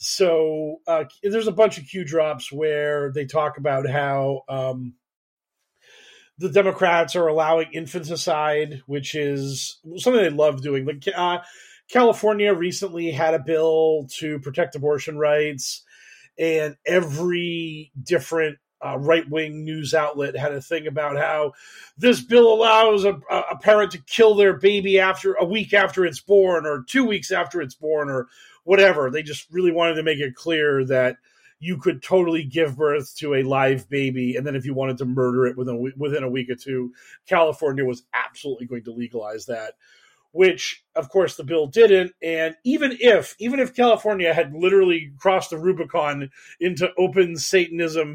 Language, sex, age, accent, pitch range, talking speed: English, male, 30-49, American, 145-185 Hz, 165 wpm